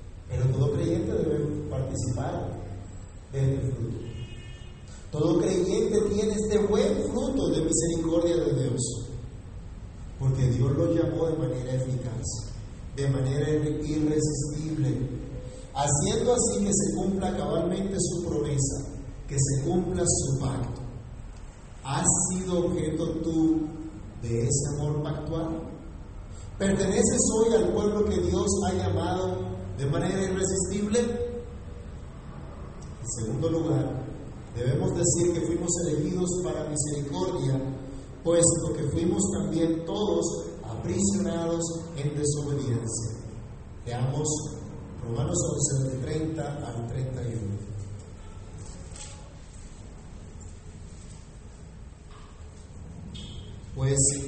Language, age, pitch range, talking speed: Spanish, 40-59, 115-165 Hz, 95 wpm